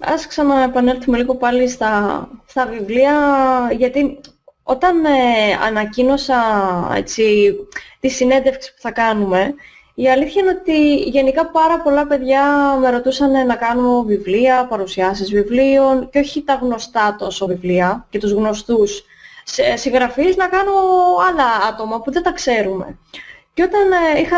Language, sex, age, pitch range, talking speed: Greek, female, 20-39, 215-295 Hz, 125 wpm